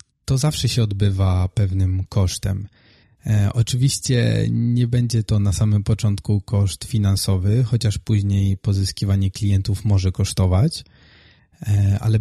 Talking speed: 110 wpm